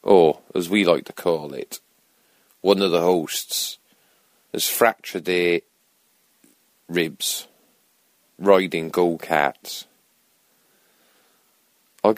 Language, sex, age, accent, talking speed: English, male, 40-59, British, 90 wpm